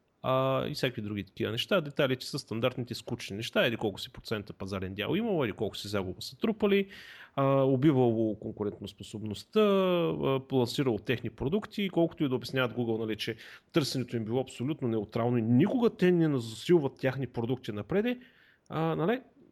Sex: male